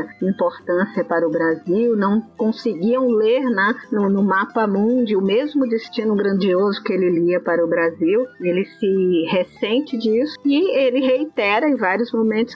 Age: 40-59